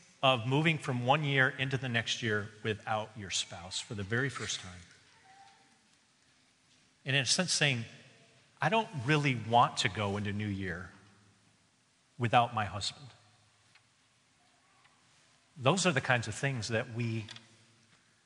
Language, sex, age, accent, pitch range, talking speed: English, male, 40-59, American, 120-185 Hz, 140 wpm